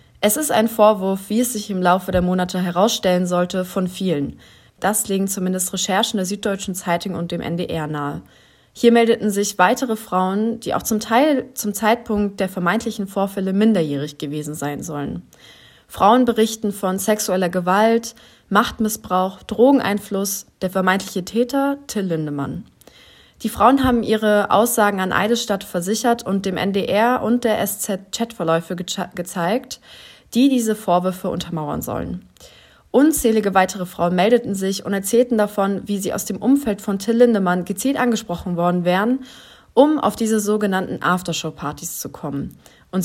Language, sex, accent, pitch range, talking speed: German, female, German, 180-220 Hz, 150 wpm